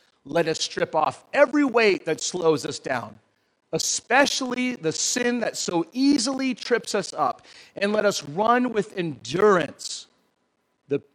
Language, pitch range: English, 150-210 Hz